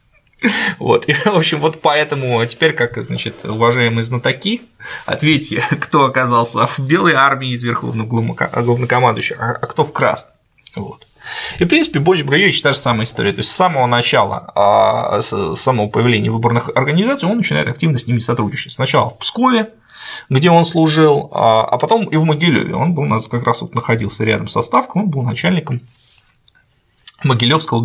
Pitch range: 120-170 Hz